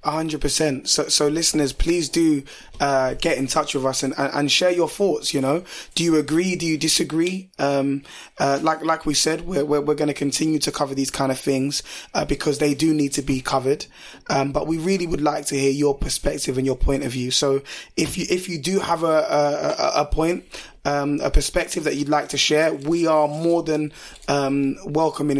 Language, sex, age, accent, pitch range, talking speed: English, male, 20-39, British, 140-155 Hz, 220 wpm